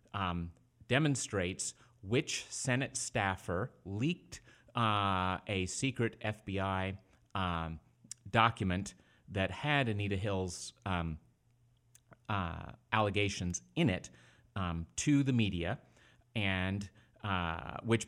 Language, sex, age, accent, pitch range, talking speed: English, male, 30-49, American, 95-115 Hz, 95 wpm